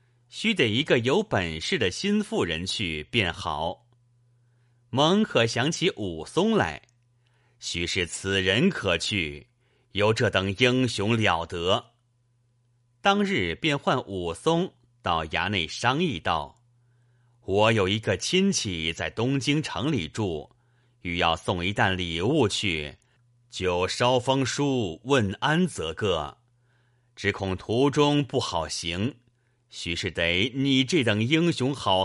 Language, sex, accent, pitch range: Chinese, male, native, 95-125 Hz